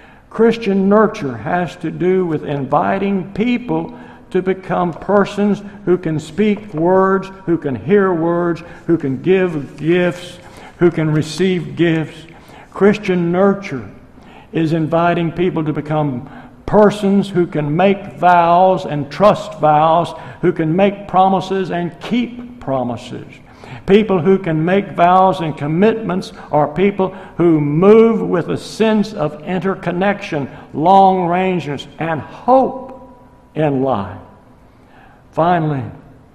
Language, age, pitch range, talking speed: English, 60-79, 150-190 Hz, 120 wpm